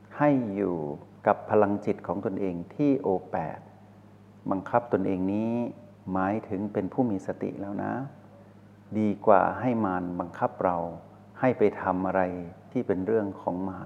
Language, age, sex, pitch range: Thai, 60-79, male, 100-115 Hz